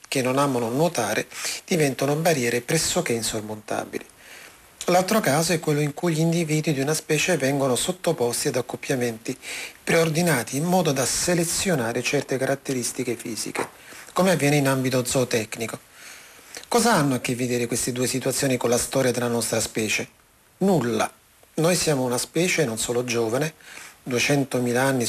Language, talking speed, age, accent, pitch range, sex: Italian, 145 wpm, 40-59, native, 125-165 Hz, male